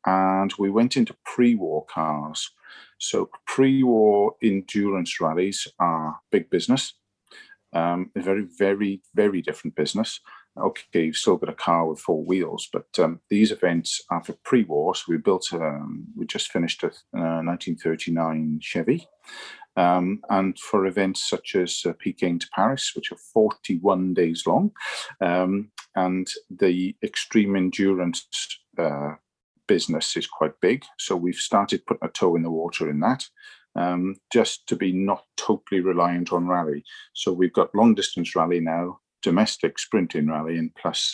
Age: 40-59